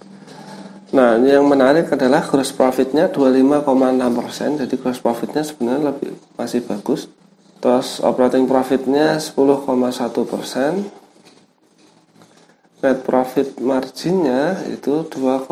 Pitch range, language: 125-145 Hz, Indonesian